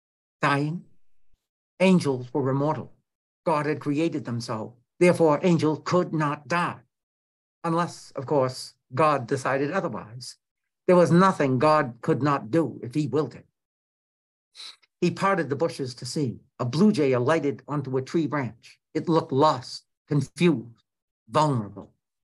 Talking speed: 135 wpm